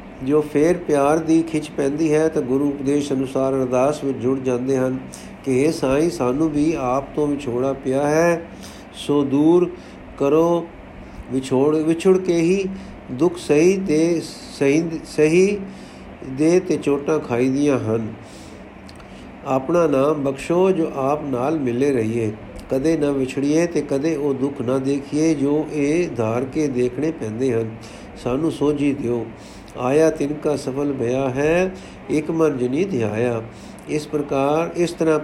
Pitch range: 130-155 Hz